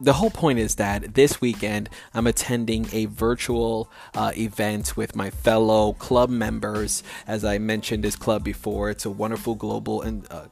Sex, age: male, 20-39